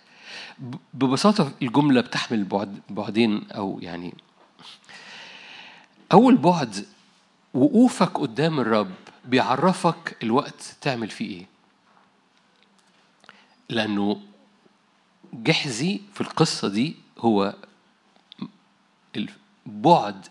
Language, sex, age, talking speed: Arabic, male, 50-69, 70 wpm